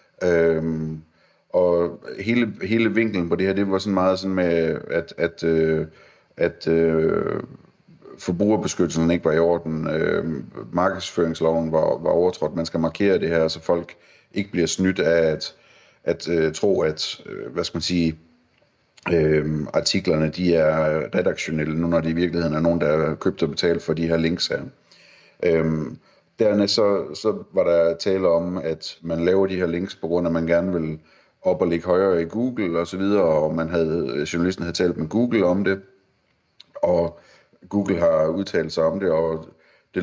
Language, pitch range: Danish, 80-95 Hz